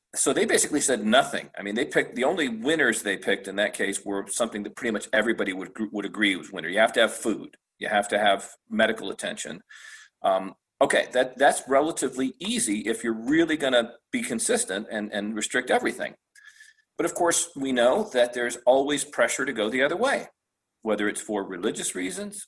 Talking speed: 195 wpm